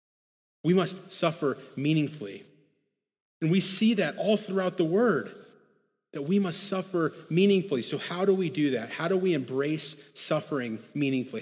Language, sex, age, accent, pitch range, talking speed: English, male, 30-49, American, 135-180 Hz, 150 wpm